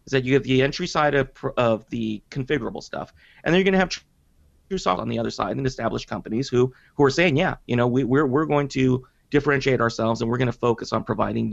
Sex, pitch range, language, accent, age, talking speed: male, 115-145 Hz, English, American, 30-49, 245 wpm